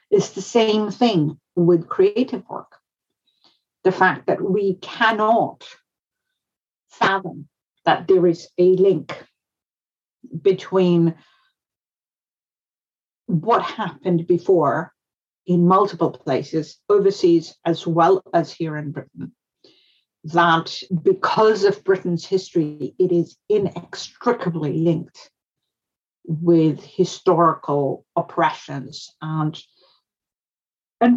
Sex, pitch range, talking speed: female, 170-230 Hz, 90 wpm